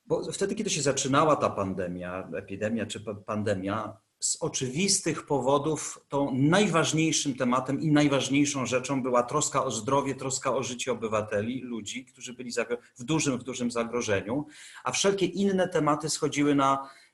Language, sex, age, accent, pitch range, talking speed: Polish, male, 40-59, native, 115-150 Hz, 145 wpm